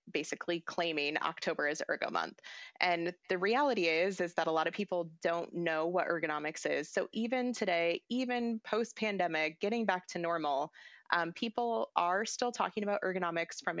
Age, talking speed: 20-39, 170 wpm